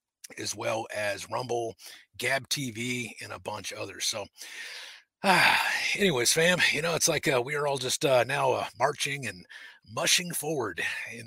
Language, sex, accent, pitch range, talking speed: English, male, American, 105-130 Hz, 170 wpm